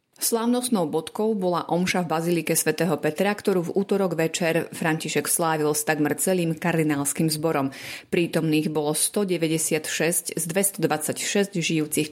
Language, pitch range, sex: Slovak, 155-190 Hz, female